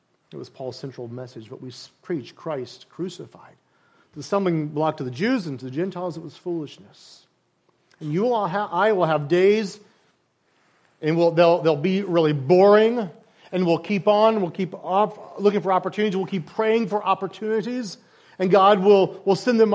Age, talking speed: 40-59, 180 wpm